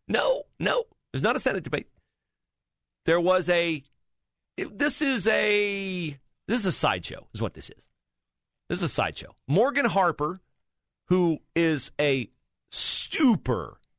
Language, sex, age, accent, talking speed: English, male, 40-59, American, 135 wpm